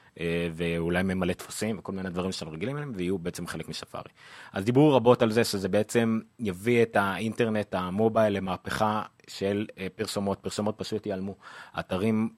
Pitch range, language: 90-115 Hz, Hebrew